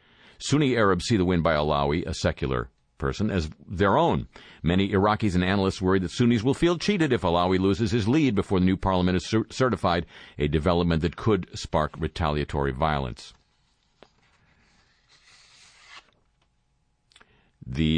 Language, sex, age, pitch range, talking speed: English, male, 50-69, 80-100 Hz, 145 wpm